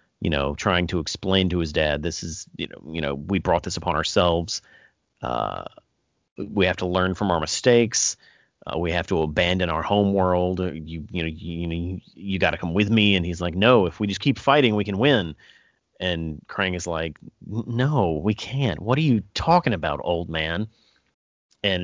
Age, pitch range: 30-49, 85-105 Hz